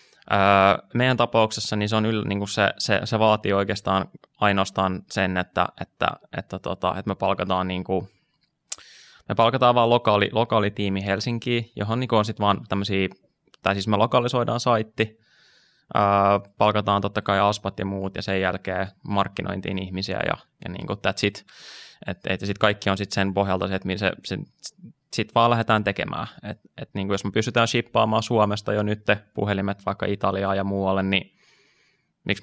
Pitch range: 95-105 Hz